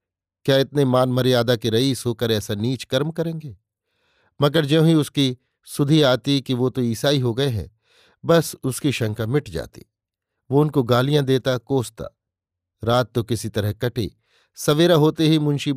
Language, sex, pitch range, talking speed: Hindi, male, 110-140 Hz, 165 wpm